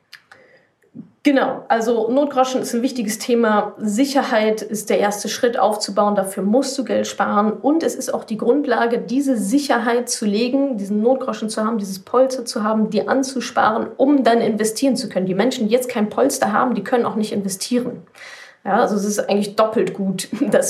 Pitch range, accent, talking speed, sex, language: 195-260 Hz, German, 180 wpm, female, German